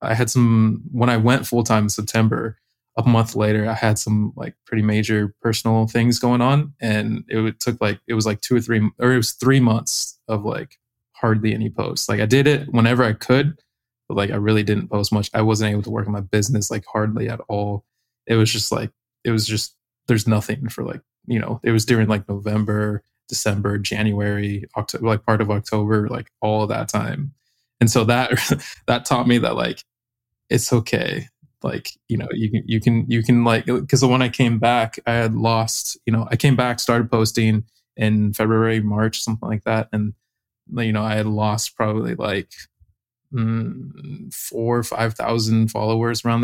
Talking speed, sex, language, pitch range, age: 195 wpm, male, English, 110-120 Hz, 20-39